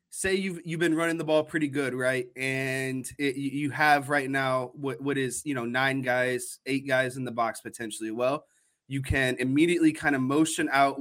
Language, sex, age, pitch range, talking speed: English, male, 20-39, 130-150 Hz, 200 wpm